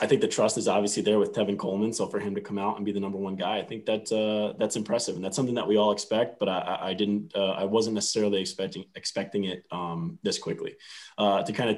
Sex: male